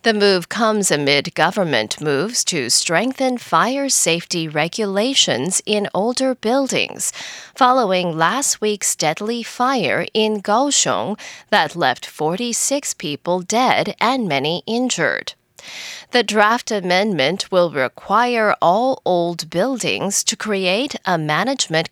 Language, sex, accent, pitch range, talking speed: English, female, American, 170-245 Hz, 110 wpm